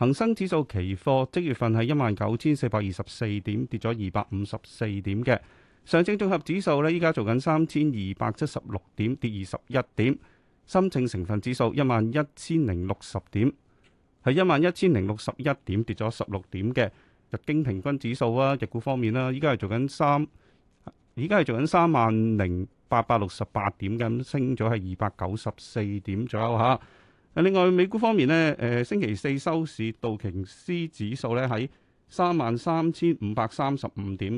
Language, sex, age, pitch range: Chinese, male, 30-49, 105-145 Hz